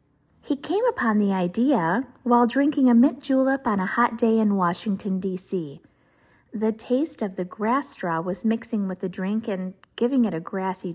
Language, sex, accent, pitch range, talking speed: English, female, American, 195-260 Hz, 180 wpm